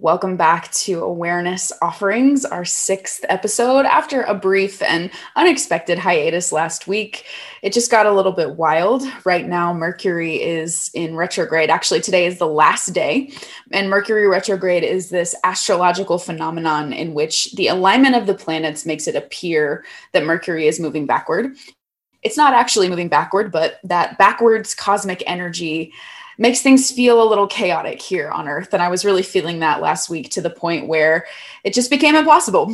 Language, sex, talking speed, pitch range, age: English, female, 170 wpm, 175-215 Hz, 20-39